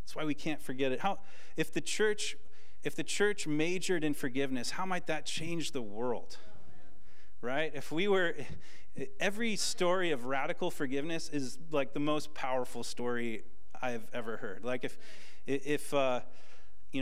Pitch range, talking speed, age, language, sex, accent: 125-165 Hz, 155 wpm, 30-49, English, male, American